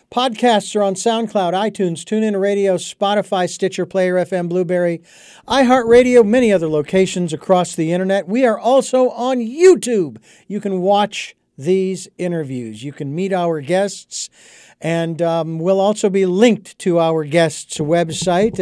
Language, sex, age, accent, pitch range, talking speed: English, male, 50-69, American, 160-205 Hz, 140 wpm